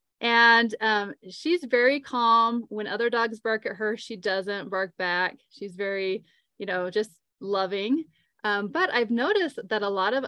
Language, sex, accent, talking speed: English, female, American, 170 wpm